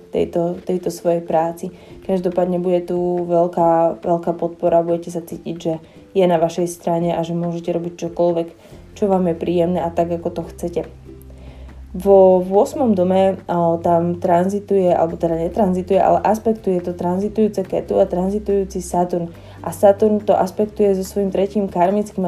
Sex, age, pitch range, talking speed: female, 20-39, 170-195 Hz, 155 wpm